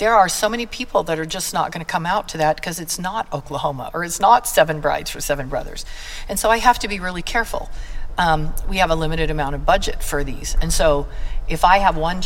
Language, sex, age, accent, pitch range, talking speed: English, female, 50-69, American, 150-185 Hz, 250 wpm